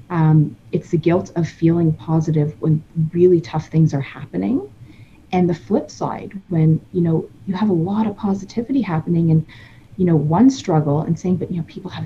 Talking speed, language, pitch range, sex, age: 195 wpm, English, 150-185 Hz, female, 30-49